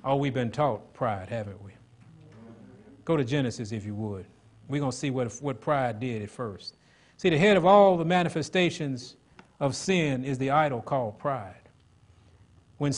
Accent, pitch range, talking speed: American, 115-170 Hz, 175 wpm